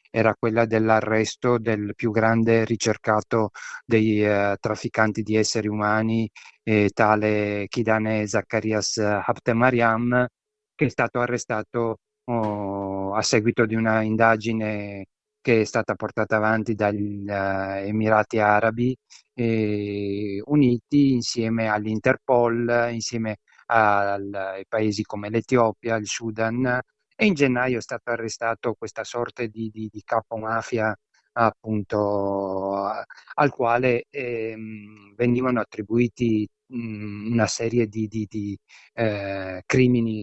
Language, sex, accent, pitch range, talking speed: Italian, male, native, 105-120 Hz, 105 wpm